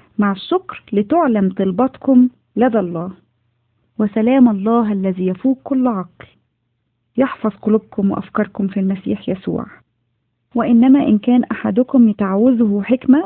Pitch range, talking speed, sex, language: 175-220 Hz, 110 wpm, female, Arabic